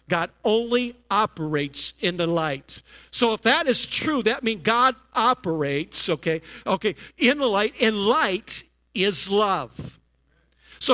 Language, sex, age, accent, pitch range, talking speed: English, male, 50-69, American, 150-230 Hz, 135 wpm